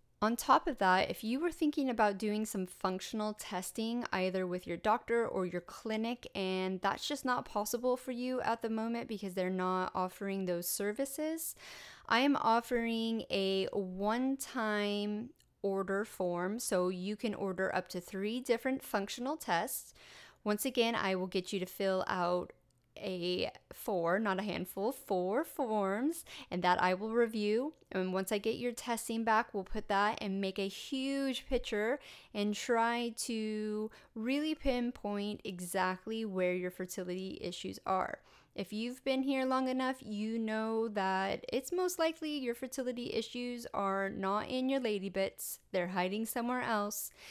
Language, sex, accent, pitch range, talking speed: English, female, American, 190-240 Hz, 160 wpm